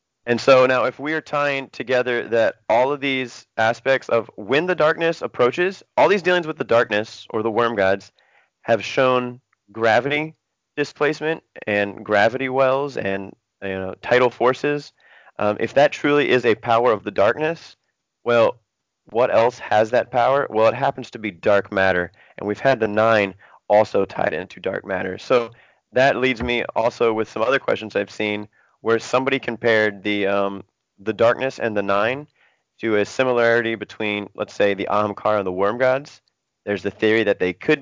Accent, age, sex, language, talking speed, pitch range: American, 30-49, male, English, 175 wpm, 105-135 Hz